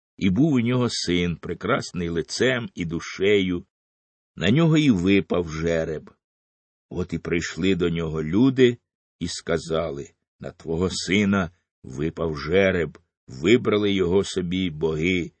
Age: 60-79